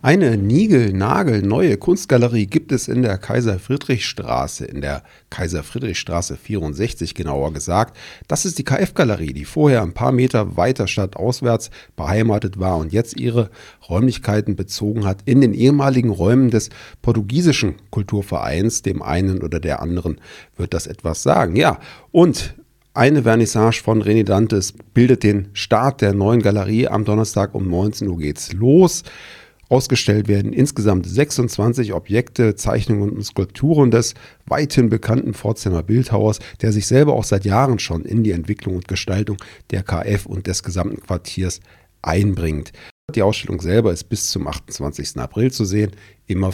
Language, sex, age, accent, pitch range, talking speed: German, male, 40-59, German, 90-120 Hz, 145 wpm